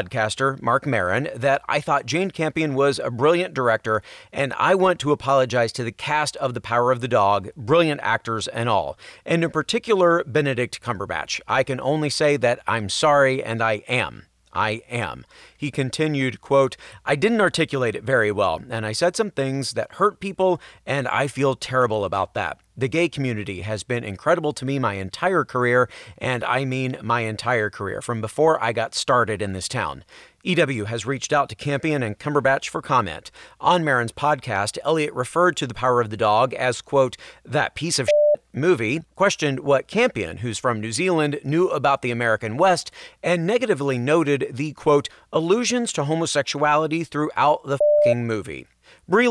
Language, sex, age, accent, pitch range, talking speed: English, male, 30-49, American, 120-170 Hz, 180 wpm